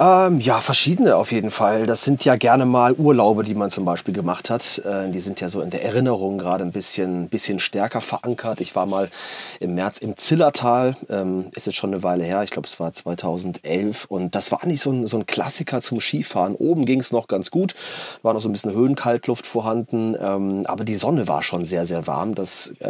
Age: 30-49